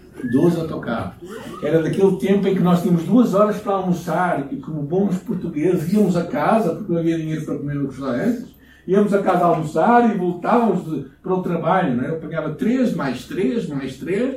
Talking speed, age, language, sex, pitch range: 205 wpm, 60-79, Portuguese, male, 115-190 Hz